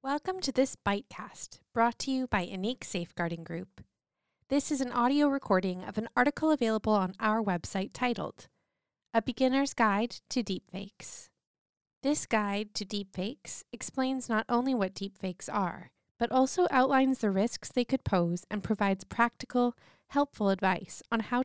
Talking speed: 150 wpm